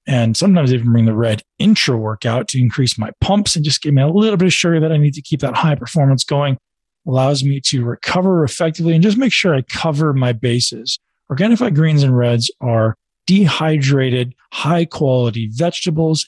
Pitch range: 120-155 Hz